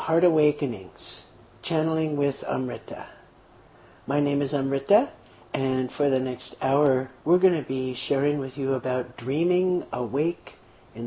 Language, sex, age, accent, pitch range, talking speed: English, male, 50-69, American, 120-155 Hz, 135 wpm